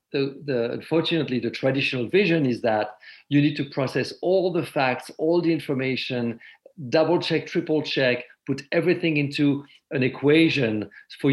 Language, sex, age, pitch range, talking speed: English, male, 50-69, 120-145 Hz, 150 wpm